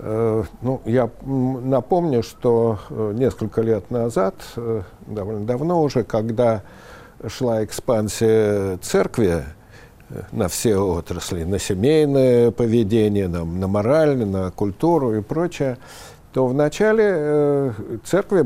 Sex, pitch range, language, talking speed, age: male, 110-135 Hz, Russian, 100 wpm, 60-79